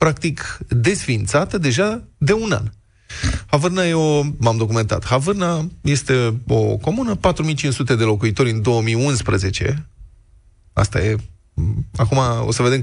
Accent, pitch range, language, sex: native, 110-155 Hz, Romanian, male